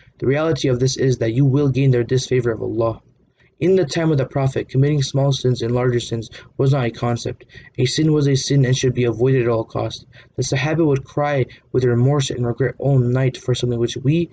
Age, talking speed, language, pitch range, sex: 20-39, 230 wpm, English, 120-145 Hz, male